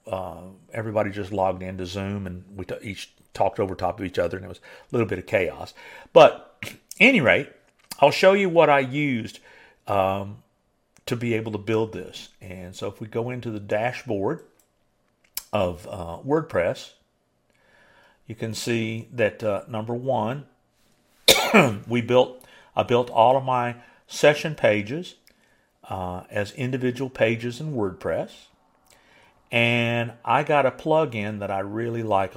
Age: 50-69